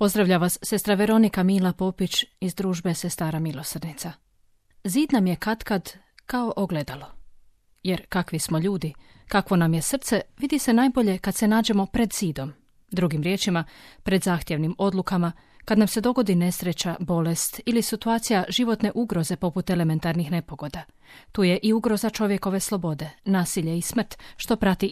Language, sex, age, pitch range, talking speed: Croatian, female, 30-49, 170-215 Hz, 145 wpm